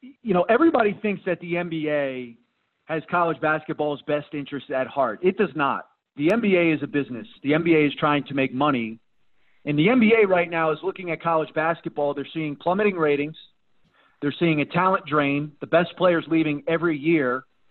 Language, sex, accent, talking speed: English, male, American, 185 wpm